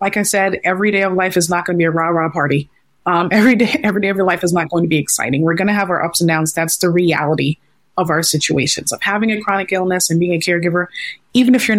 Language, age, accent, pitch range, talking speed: English, 20-39, American, 165-195 Hz, 275 wpm